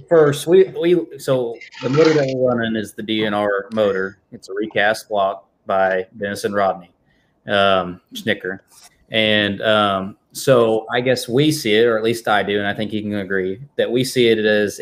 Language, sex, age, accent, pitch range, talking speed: English, male, 30-49, American, 100-115 Hz, 190 wpm